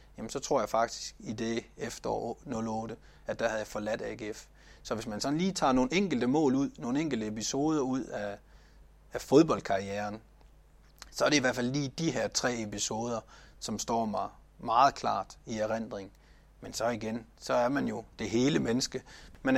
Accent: native